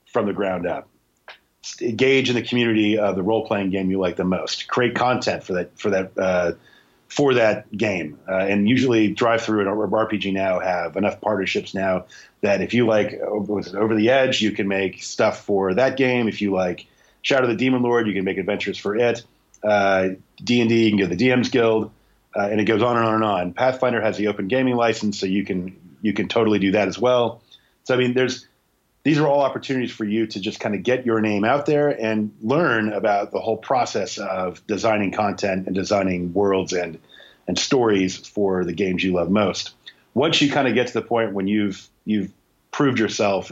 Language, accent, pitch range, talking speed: English, American, 95-115 Hz, 210 wpm